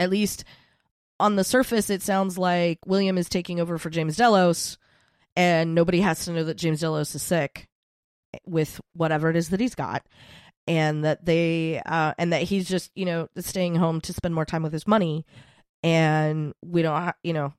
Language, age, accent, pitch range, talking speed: English, 20-39, American, 165-200 Hz, 190 wpm